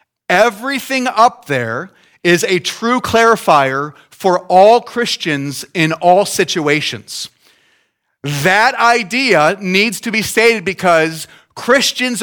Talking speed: 105 wpm